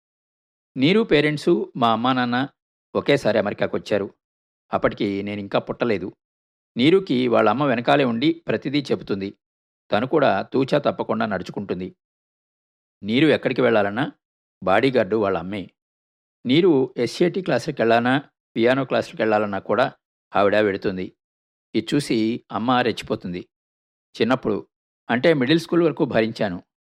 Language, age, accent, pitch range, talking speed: Telugu, 50-69, native, 100-145 Hz, 105 wpm